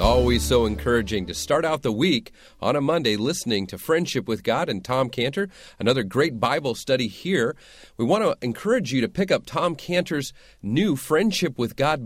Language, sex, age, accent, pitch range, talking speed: English, male, 40-59, American, 110-155 Hz, 190 wpm